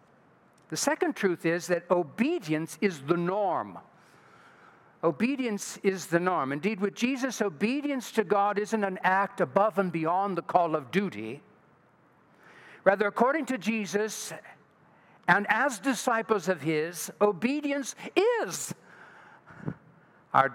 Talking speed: 120 wpm